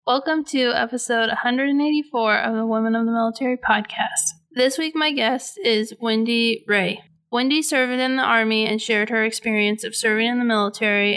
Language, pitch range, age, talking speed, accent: English, 215-245 Hz, 20-39, 170 wpm, American